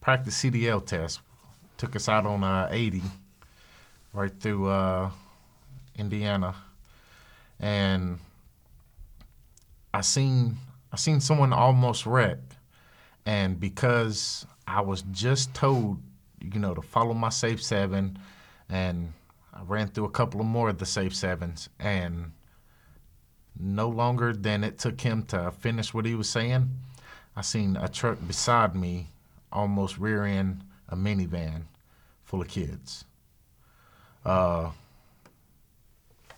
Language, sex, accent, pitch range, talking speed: English, male, American, 90-115 Hz, 120 wpm